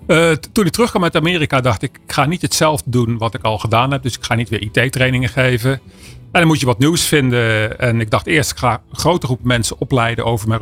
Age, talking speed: 40-59, 260 wpm